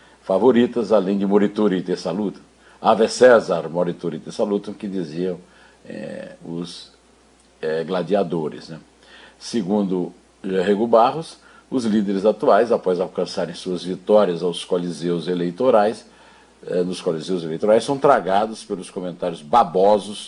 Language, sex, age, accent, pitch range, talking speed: Portuguese, male, 60-79, Brazilian, 90-105 Hz, 120 wpm